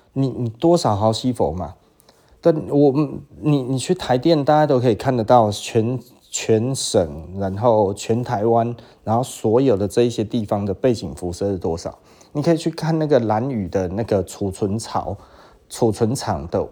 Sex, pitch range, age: male, 115-165 Hz, 30-49